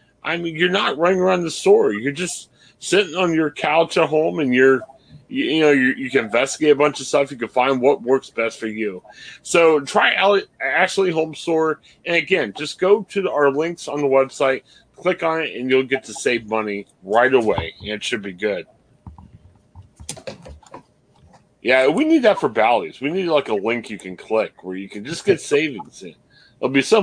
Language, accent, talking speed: English, American, 200 wpm